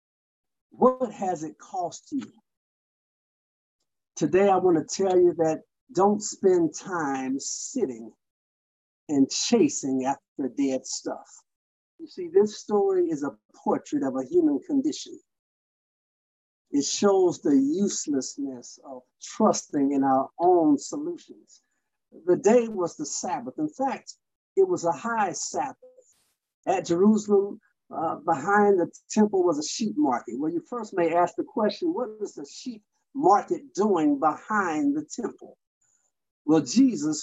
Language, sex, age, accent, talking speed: English, male, 50-69, American, 130 wpm